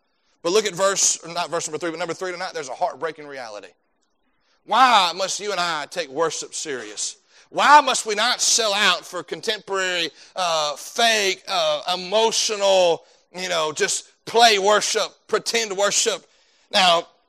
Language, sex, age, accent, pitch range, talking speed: English, male, 30-49, American, 170-220 Hz, 155 wpm